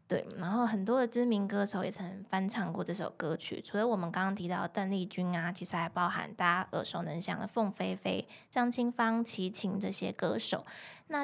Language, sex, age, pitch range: Chinese, female, 20-39, 185-225 Hz